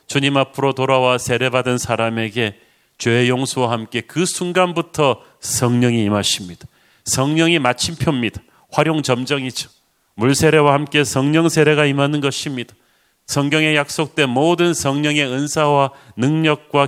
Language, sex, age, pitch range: Korean, male, 40-59, 125-150 Hz